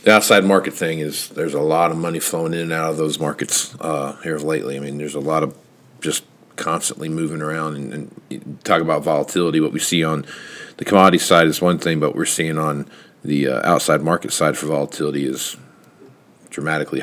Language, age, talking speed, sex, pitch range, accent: English, 50-69, 205 wpm, male, 75-85 Hz, American